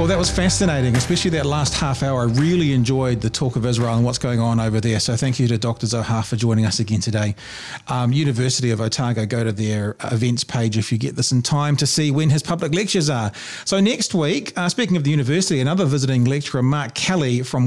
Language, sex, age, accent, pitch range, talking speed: English, male, 40-59, Australian, 125-150 Hz, 235 wpm